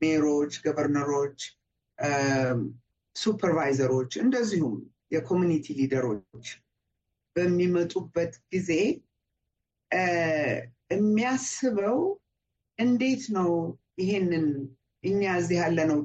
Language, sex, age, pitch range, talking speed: Amharic, female, 50-69, 150-210 Hz, 55 wpm